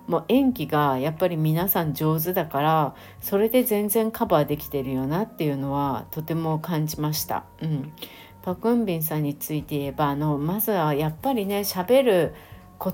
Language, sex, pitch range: Japanese, female, 150-190 Hz